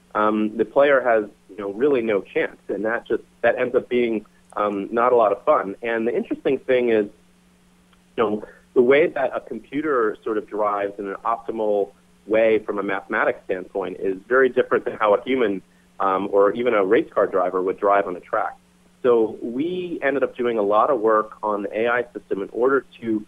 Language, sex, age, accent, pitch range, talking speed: English, male, 30-49, American, 100-160 Hz, 205 wpm